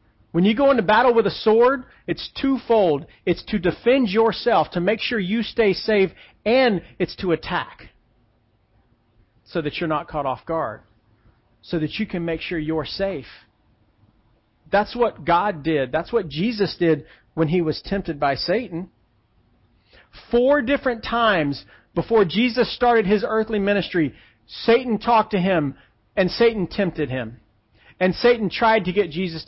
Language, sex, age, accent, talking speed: English, male, 40-59, American, 155 wpm